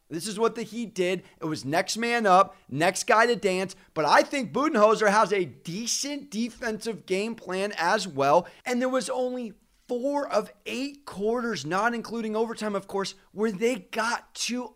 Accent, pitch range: American, 185-240 Hz